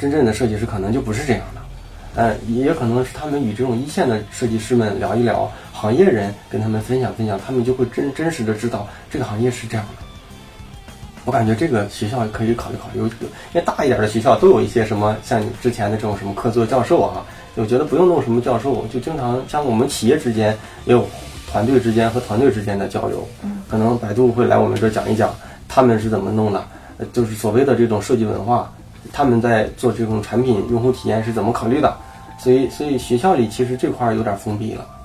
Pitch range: 105-125 Hz